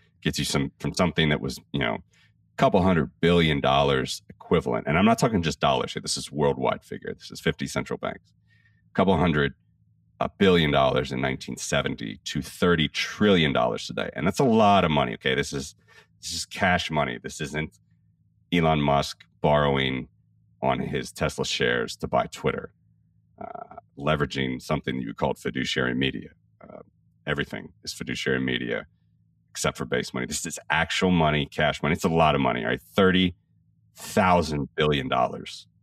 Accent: American